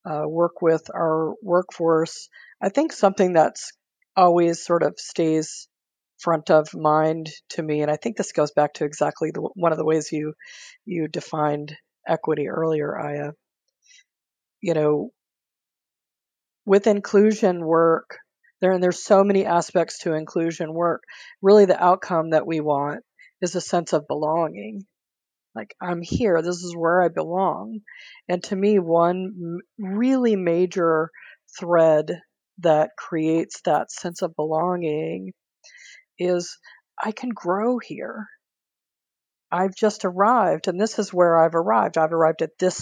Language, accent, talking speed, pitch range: English, American, 140 wpm, 160-190 Hz